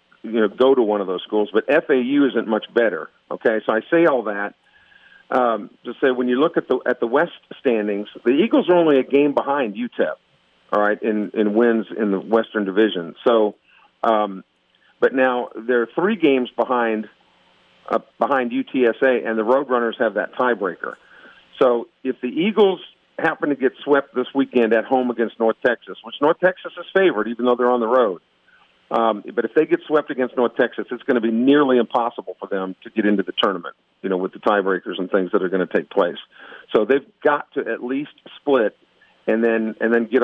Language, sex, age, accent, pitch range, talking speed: English, male, 50-69, American, 110-140 Hz, 205 wpm